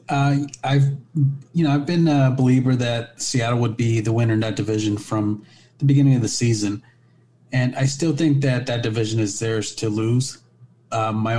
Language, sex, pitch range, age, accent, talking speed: English, male, 110-125 Hz, 30-49, American, 190 wpm